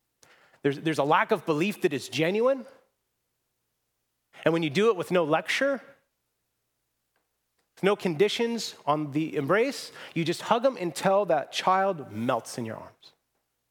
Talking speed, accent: 150 wpm, American